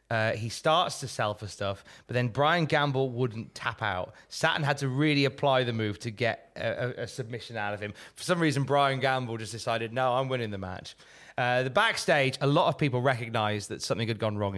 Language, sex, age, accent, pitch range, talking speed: English, male, 20-39, British, 120-170 Hz, 220 wpm